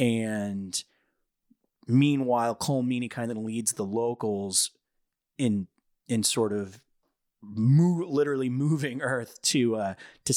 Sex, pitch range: male, 105-125 Hz